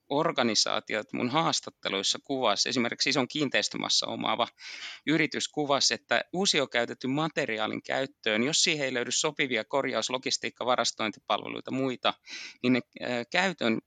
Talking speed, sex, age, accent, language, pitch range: 115 wpm, male, 30-49, native, Finnish, 120-145 Hz